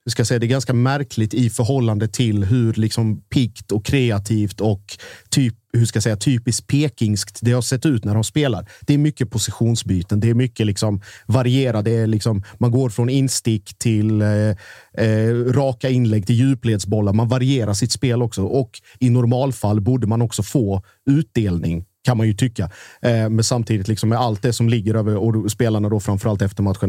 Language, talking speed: Swedish, 180 wpm